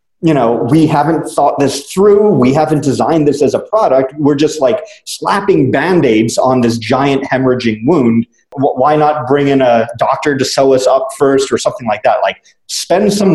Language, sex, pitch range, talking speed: English, male, 115-150 Hz, 190 wpm